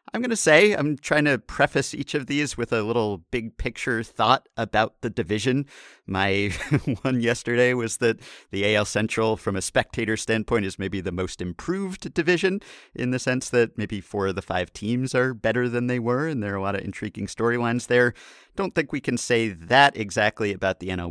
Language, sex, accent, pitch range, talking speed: English, male, American, 100-130 Hz, 205 wpm